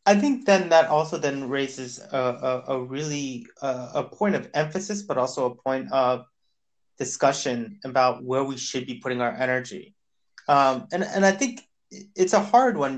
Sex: male